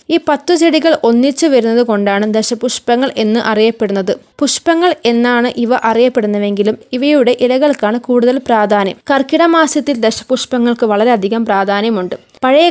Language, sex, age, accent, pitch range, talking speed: Malayalam, female, 20-39, native, 225-280 Hz, 105 wpm